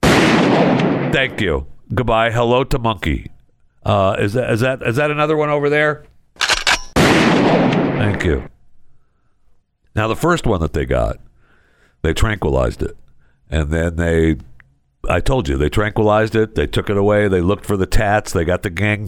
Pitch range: 90-150 Hz